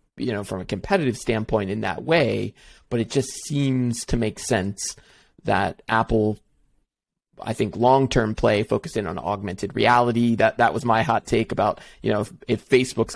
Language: English